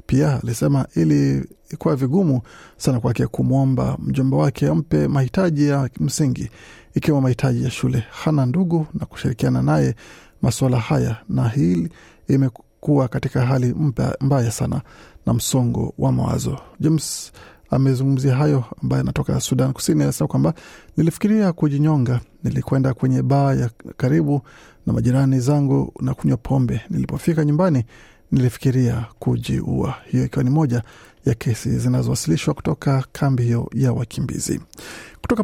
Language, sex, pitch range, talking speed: Swahili, male, 125-150 Hz, 130 wpm